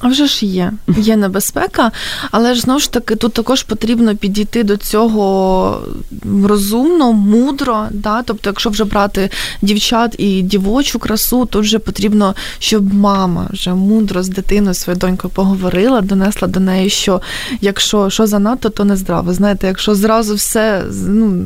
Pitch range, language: 195-235 Hz, Ukrainian